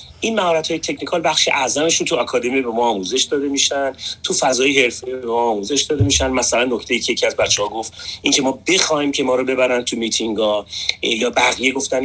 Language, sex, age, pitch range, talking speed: Persian, male, 30-49, 125-185 Hz, 190 wpm